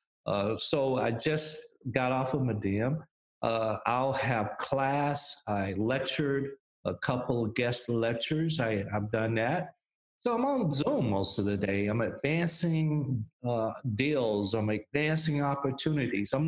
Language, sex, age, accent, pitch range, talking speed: English, male, 40-59, American, 110-145 Hz, 140 wpm